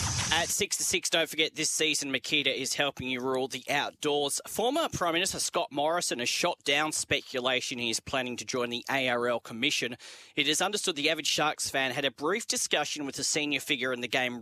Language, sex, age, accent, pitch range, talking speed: English, male, 40-59, Australian, 125-160 Hz, 210 wpm